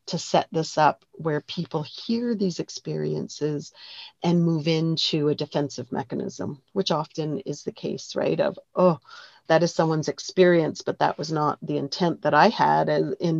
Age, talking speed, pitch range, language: 40-59, 165 wpm, 150-185 Hz, English